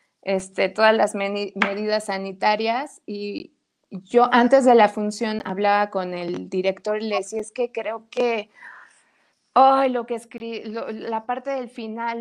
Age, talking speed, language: 20-39, 155 wpm, Spanish